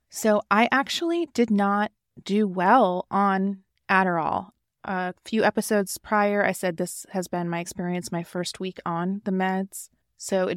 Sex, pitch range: female, 180-205 Hz